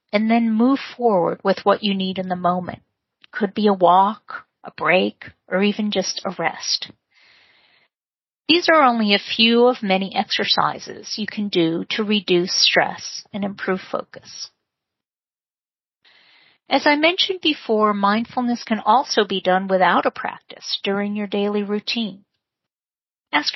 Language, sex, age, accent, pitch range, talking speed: English, female, 40-59, American, 190-230 Hz, 145 wpm